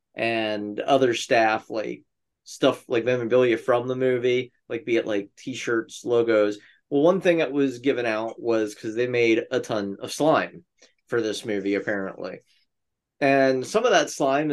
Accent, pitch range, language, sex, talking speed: American, 105-130 Hz, English, male, 165 wpm